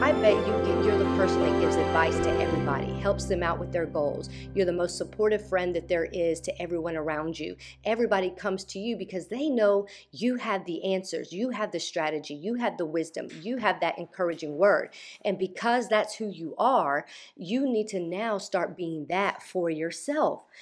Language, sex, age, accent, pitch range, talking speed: English, female, 40-59, American, 170-210 Hz, 200 wpm